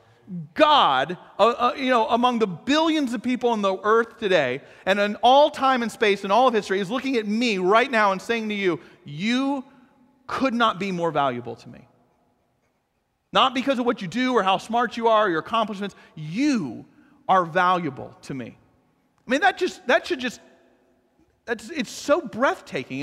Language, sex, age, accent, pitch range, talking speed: English, male, 40-59, American, 195-270 Hz, 190 wpm